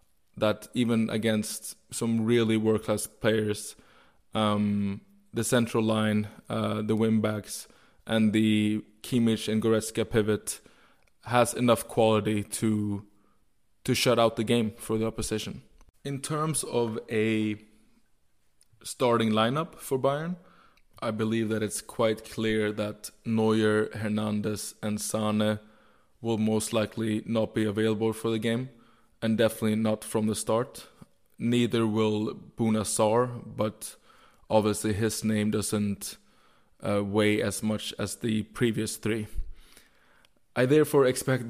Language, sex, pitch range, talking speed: English, male, 110-115 Hz, 125 wpm